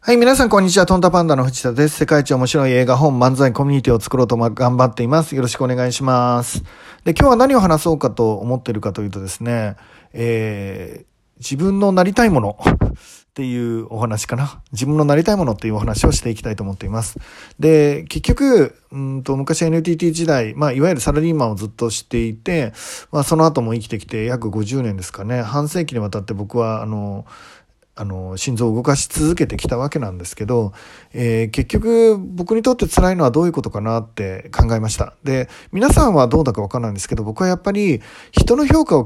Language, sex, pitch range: Japanese, male, 110-160 Hz